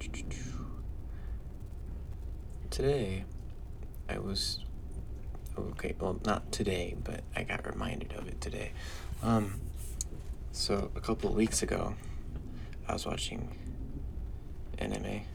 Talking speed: 100 wpm